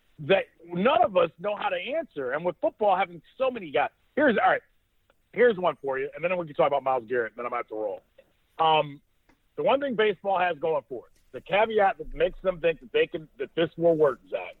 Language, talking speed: English, 240 wpm